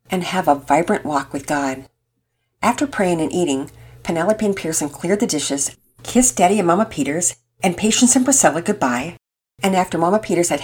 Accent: American